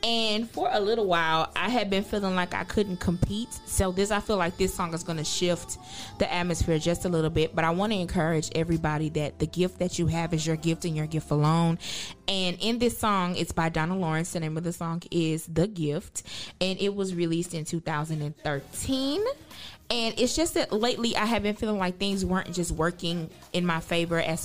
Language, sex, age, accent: English, female, 20-39, American